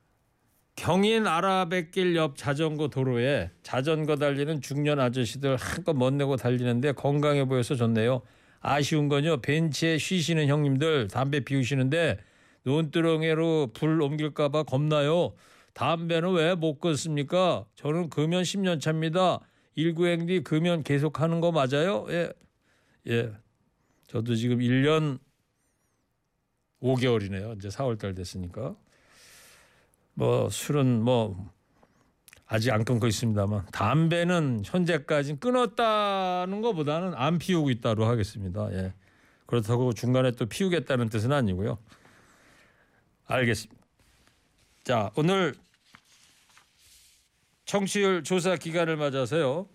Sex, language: male, Korean